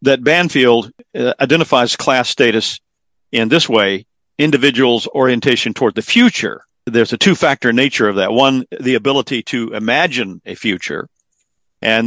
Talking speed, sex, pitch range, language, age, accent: 140 wpm, male, 105-130 Hz, English, 50-69, American